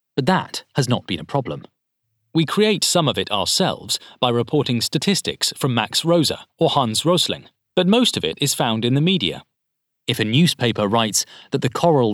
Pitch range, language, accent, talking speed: 115-155 Hz, English, British, 190 wpm